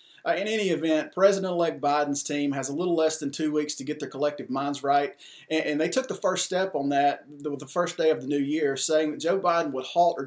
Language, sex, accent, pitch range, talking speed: English, male, American, 140-165 Hz, 245 wpm